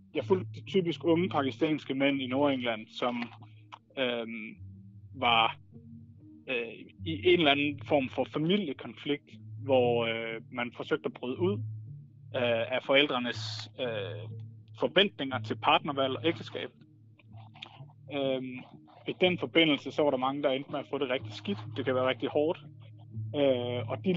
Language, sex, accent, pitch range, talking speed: Danish, male, native, 115-140 Hz, 130 wpm